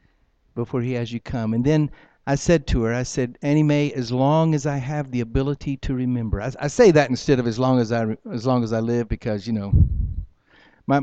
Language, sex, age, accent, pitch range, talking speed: English, male, 60-79, American, 110-155 Hz, 220 wpm